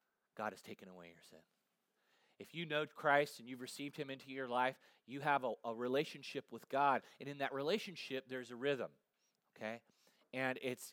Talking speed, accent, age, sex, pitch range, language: 185 wpm, American, 30-49, male, 130-180 Hz, English